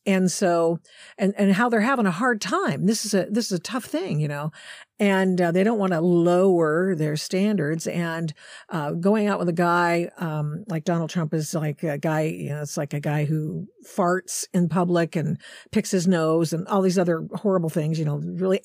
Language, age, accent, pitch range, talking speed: English, 50-69, American, 165-205 Hz, 215 wpm